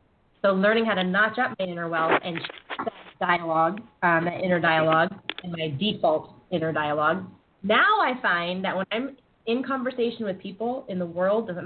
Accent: American